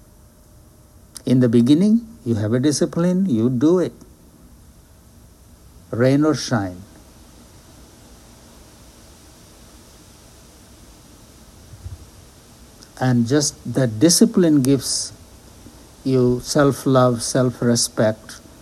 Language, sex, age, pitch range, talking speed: English, male, 60-79, 105-140 Hz, 70 wpm